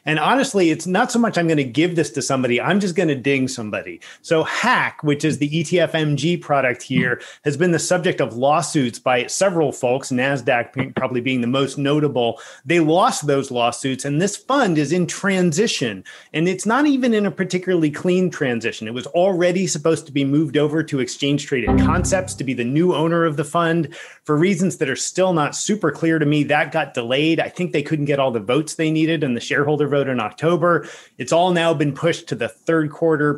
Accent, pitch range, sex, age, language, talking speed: American, 135-170 Hz, male, 30-49, English, 215 wpm